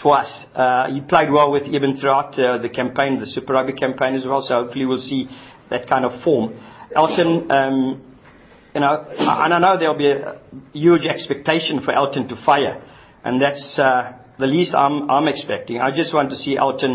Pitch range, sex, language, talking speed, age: 130-155 Hz, male, English, 200 wpm, 50-69